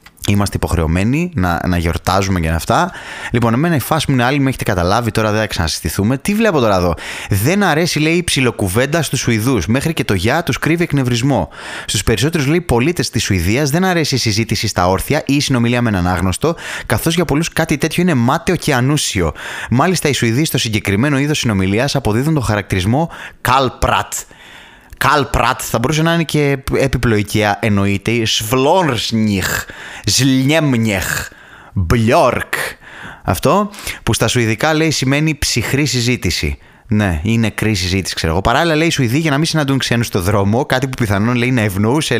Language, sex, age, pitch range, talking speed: Greek, male, 20-39, 105-150 Hz, 170 wpm